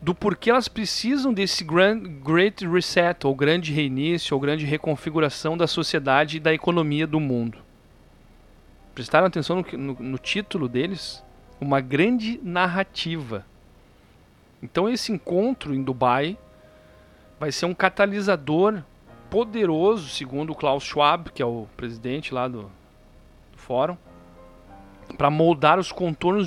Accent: Brazilian